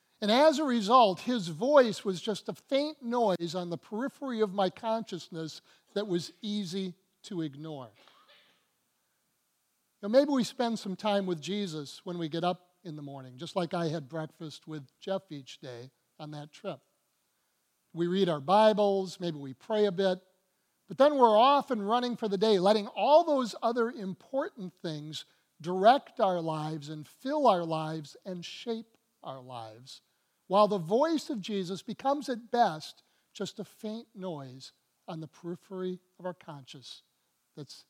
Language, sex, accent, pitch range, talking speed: English, male, American, 155-220 Hz, 165 wpm